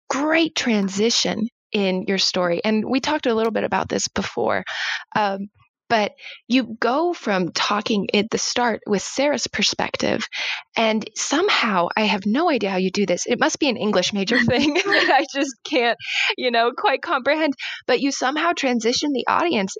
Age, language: 20-39, English